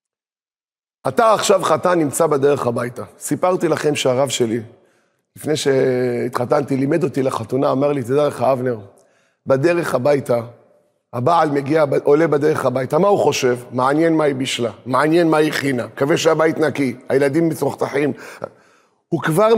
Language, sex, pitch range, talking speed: Hebrew, male, 150-210 Hz, 140 wpm